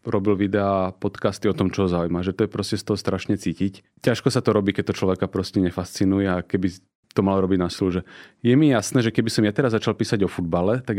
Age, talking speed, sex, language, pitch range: 30-49, 245 wpm, male, Slovak, 95-120 Hz